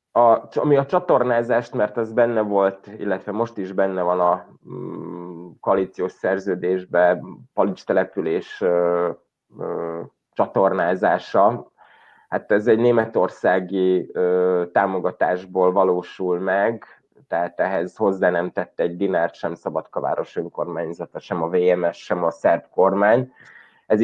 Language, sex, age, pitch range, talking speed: Hungarian, male, 20-39, 90-115 Hz, 115 wpm